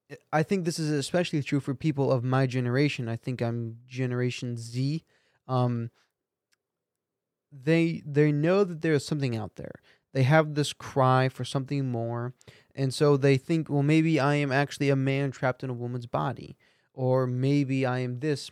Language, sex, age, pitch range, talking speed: English, male, 20-39, 125-155 Hz, 170 wpm